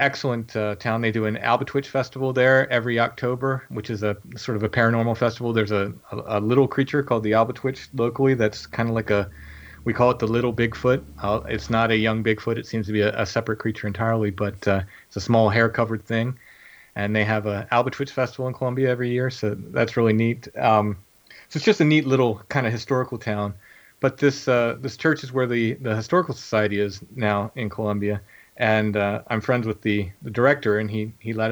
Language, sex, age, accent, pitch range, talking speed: English, male, 30-49, American, 110-130 Hz, 220 wpm